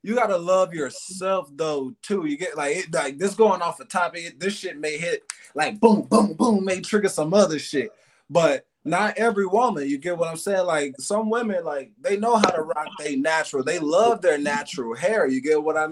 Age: 20-39